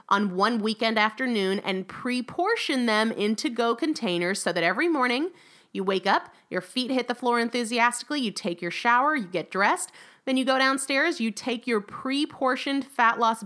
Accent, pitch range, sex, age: American, 200-265 Hz, female, 30-49